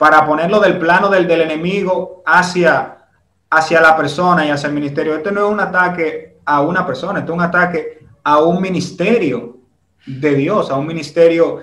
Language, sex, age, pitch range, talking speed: English, male, 30-49, 145-185 Hz, 180 wpm